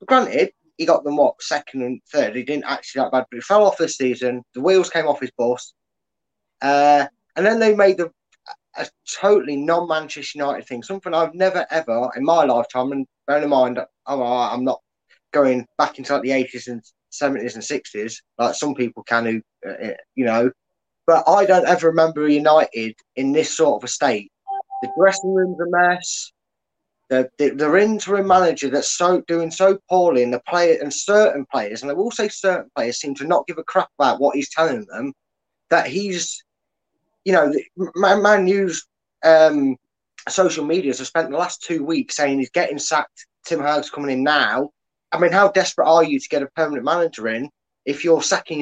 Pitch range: 140-190 Hz